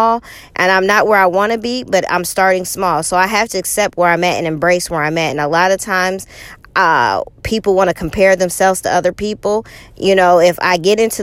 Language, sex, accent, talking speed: English, female, American, 240 wpm